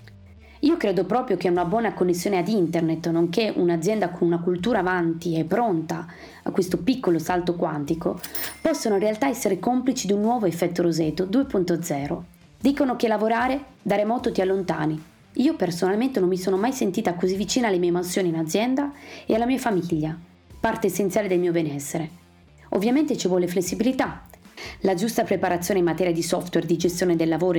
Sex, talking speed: female, 170 wpm